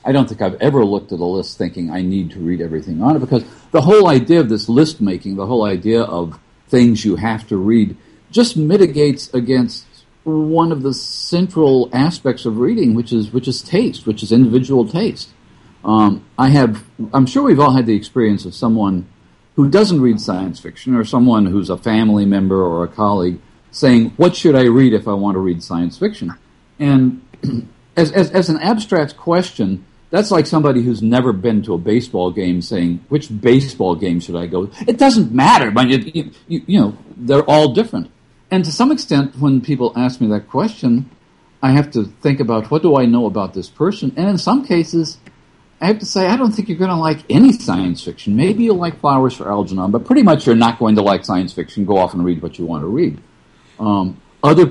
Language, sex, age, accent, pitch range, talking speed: English, male, 50-69, American, 100-150 Hz, 215 wpm